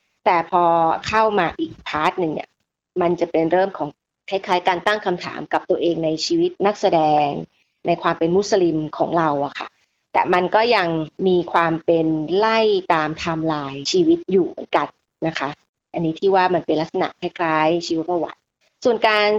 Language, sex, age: Thai, female, 30-49